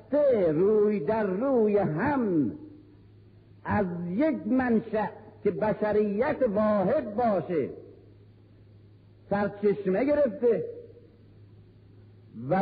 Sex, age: male, 50-69